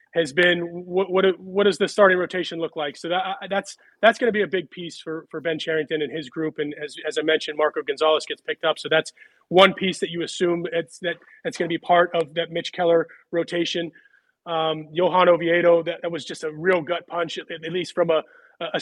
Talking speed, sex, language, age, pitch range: 230 wpm, male, English, 30-49, 165-200 Hz